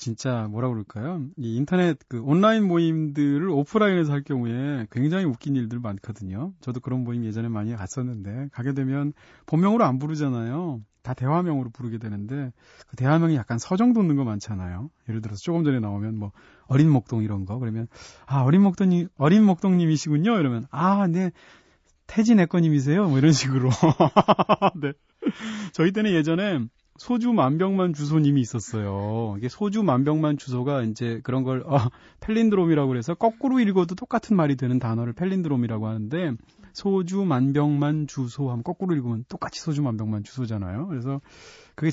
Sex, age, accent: male, 30-49, native